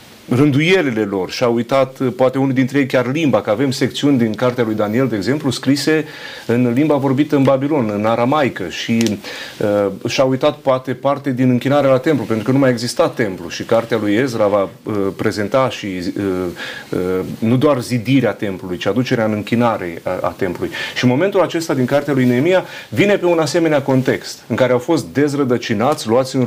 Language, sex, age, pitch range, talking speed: Romanian, male, 30-49, 120-145 Hz, 180 wpm